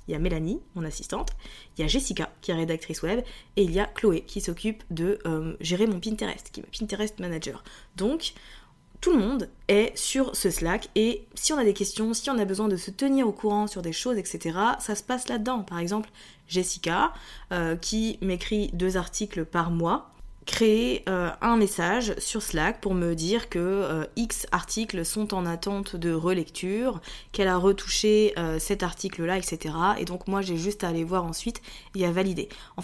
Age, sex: 20-39, female